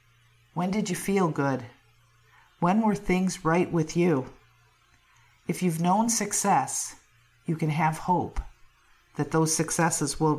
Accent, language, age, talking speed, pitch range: American, English, 50-69, 135 wpm, 140-185 Hz